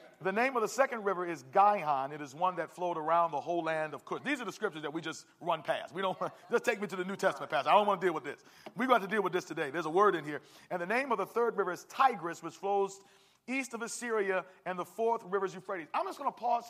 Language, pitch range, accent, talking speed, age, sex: English, 180-230 Hz, American, 300 wpm, 40-59, male